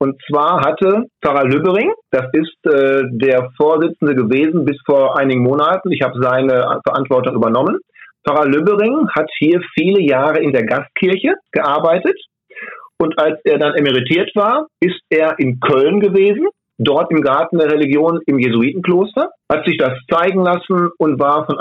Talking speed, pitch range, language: 155 wpm, 135-170 Hz, German